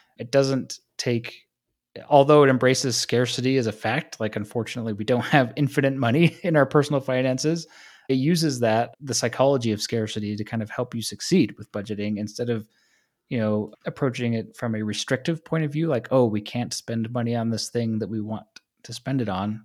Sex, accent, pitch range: male, American, 110-135 Hz